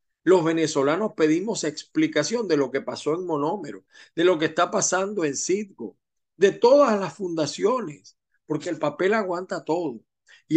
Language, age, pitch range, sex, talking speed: Spanish, 50-69, 140-185 Hz, male, 155 wpm